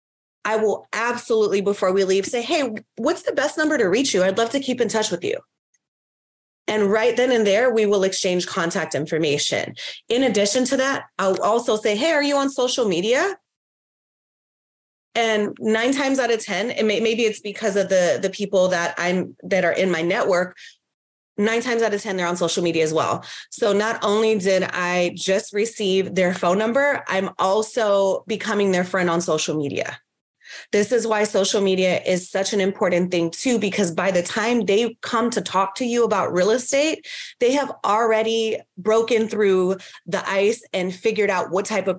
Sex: female